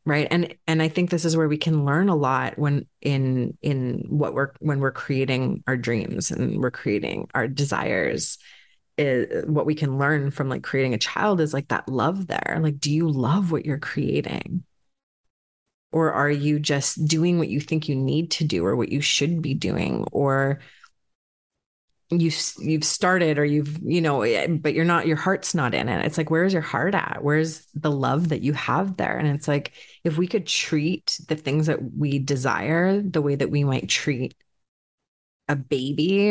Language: English